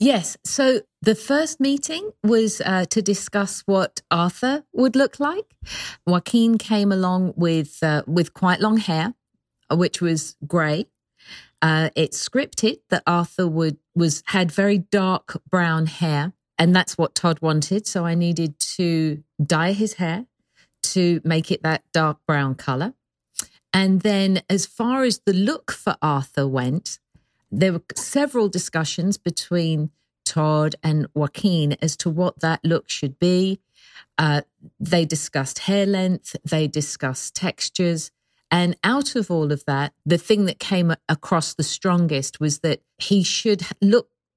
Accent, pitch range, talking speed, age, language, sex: British, 155-195 Hz, 145 wpm, 40-59, English, female